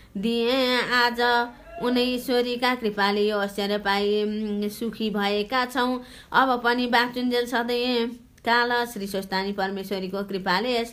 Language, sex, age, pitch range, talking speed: English, female, 20-39, 210-250 Hz, 125 wpm